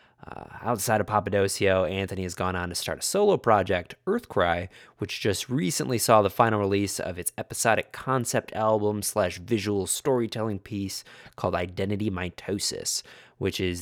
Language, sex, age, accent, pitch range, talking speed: English, male, 20-39, American, 90-105 Hz, 150 wpm